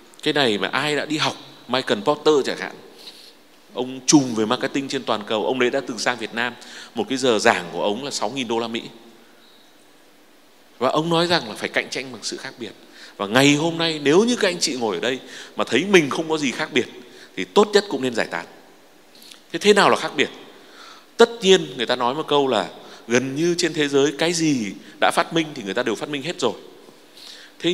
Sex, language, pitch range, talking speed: male, Vietnamese, 120-165 Hz, 230 wpm